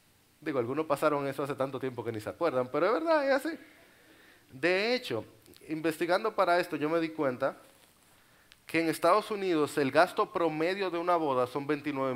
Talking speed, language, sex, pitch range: 185 wpm, Spanish, male, 140-195 Hz